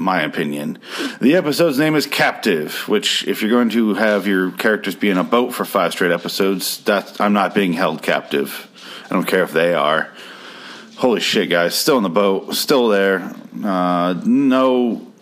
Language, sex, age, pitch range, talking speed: English, male, 40-59, 100-170 Hz, 180 wpm